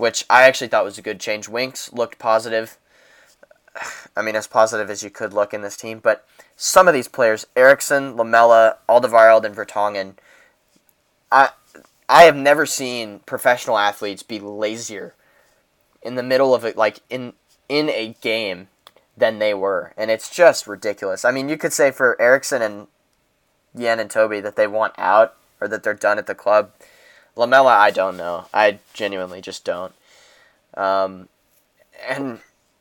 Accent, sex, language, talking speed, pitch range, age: American, male, English, 165 wpm, 105-135 Hz, 10-29